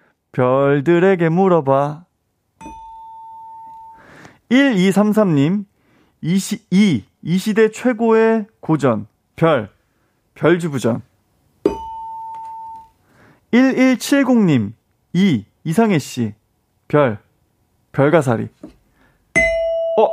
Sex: male